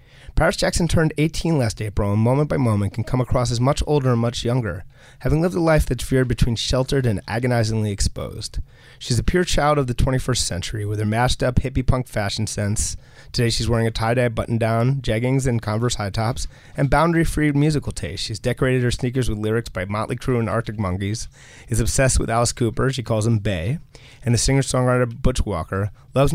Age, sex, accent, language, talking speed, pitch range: 30-49, male, American, English, 200 wpm, 105-130 Hz